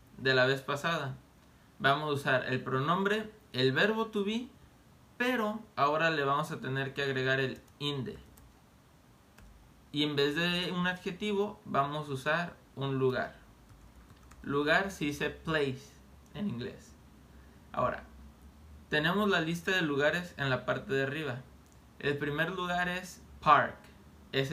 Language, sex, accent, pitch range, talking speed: Spanish, male, Mexican, 125-170 Hz, 140 wpm